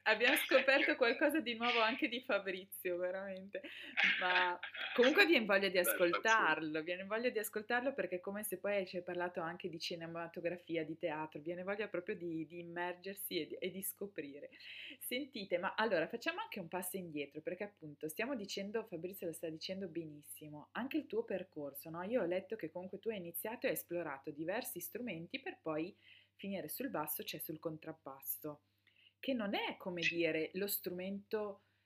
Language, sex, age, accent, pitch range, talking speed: Italian, female, 20-39, native, 165-210 Hz, 175 wpm